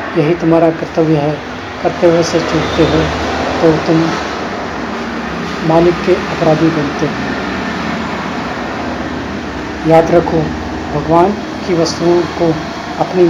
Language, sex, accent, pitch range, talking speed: Hindi, male, native, 155-170 Hz, 100 wpm